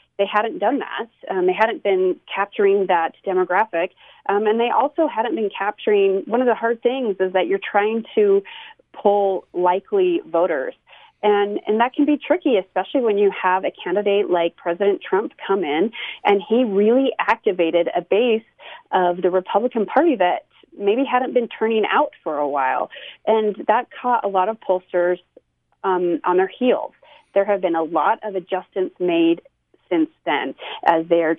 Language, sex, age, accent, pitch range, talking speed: English, female, 30-49, American, 185-280 Hz, 175 wpm